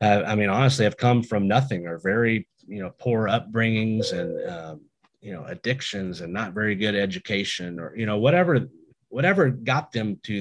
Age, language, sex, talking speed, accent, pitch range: 30-49, English, male, 180 wpm, American, 100-125 Hz